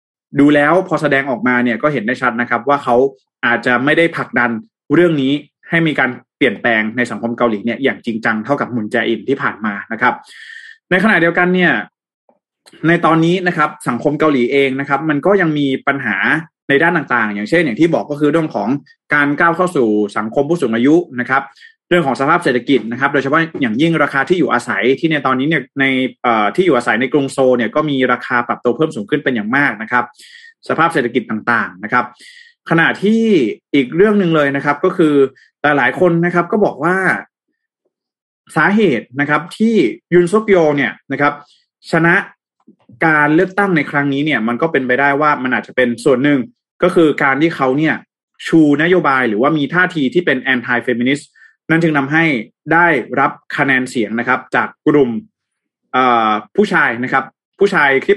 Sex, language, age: male, Thai, 20-39